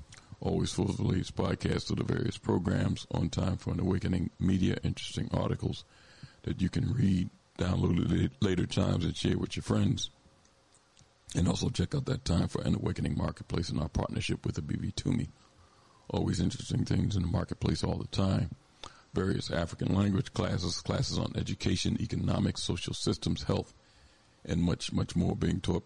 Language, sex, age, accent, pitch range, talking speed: English, male, 50-69, American, 90-110 Hz, 165 wpm